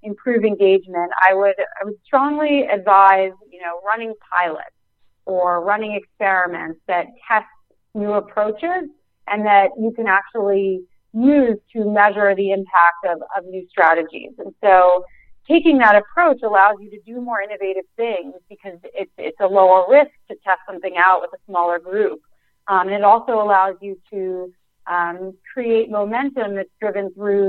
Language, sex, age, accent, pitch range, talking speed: English, female, 30-49, American, 185-225 Hz, 155 wpm